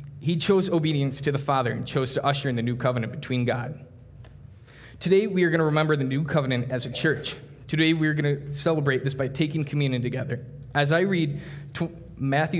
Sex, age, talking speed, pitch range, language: male, 20-39, 205 wpm, 130-155 Hz, English